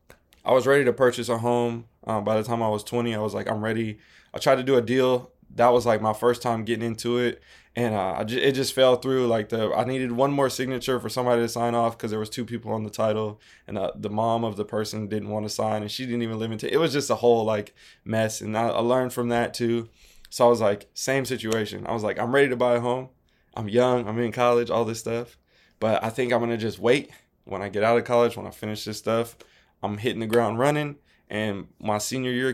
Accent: American